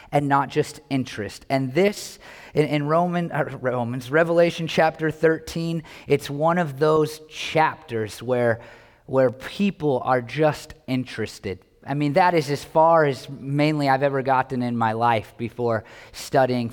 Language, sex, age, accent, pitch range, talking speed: English, male, 30-49, American, 125-180 Hz, 145 wpm